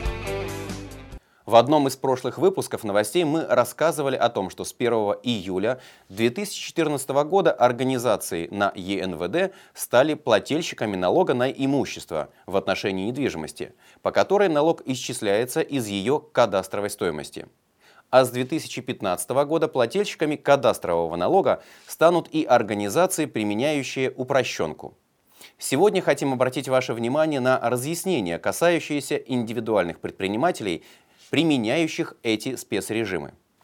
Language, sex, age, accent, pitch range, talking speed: Russian, male, 30-49, native, 110-155 Hz, 105 wpm